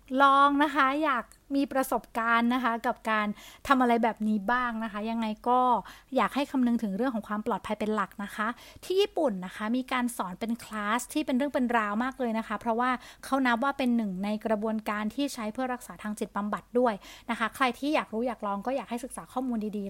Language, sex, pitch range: Thai, female, 215-280 Hz